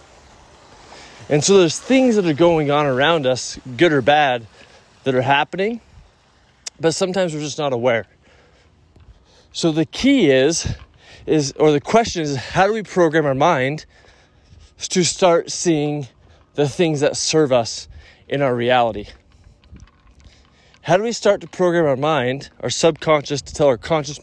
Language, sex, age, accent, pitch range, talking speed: English, male, 20-39, American, 100-155 Hz, 155 wpm